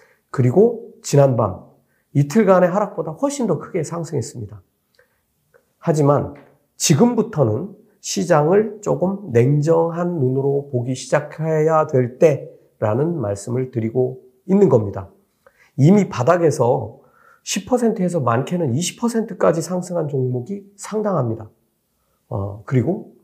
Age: 40-59